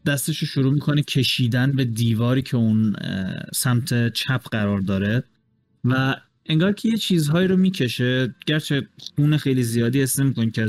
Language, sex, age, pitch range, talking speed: Persian, male, 30-49, 110-135 Hz, 150 wpm